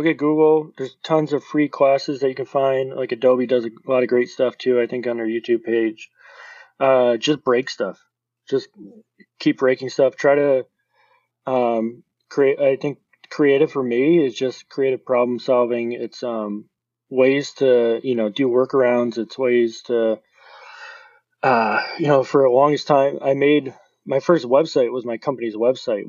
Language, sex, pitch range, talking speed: English, male, 115-140 Hz, 170 wpm